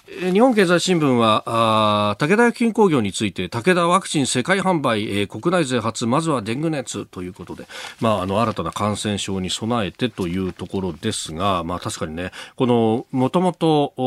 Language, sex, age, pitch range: Japanese, male, 40-59, 95-130 Hz